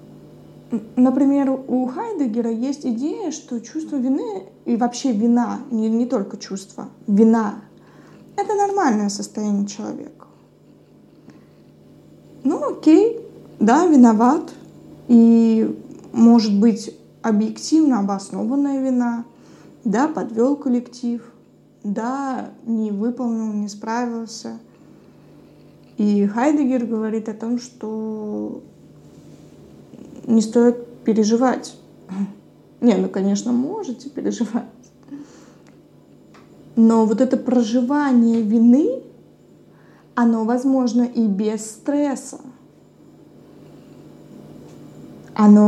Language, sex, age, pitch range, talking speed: Russian, female, 20-39, 225-270 Hz, 85 wpm